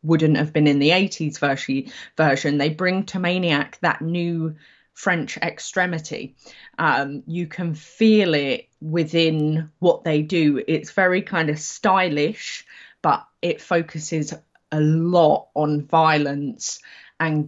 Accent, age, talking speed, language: British, 20-39, 125 wpm, English